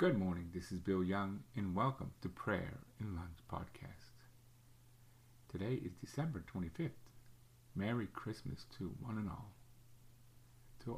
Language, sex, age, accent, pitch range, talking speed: English, male, 50-69, American, 105-120 Hz, 130 wpm